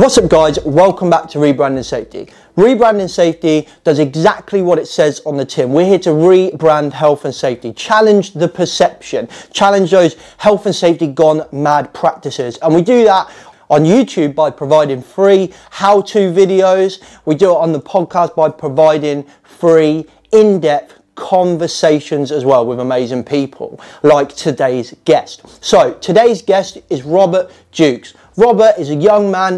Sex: male